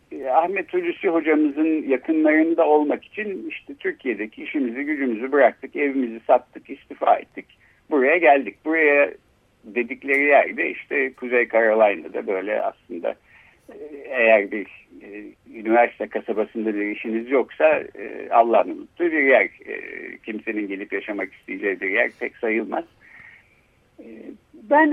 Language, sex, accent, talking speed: Turkish, male, native, 105 wpm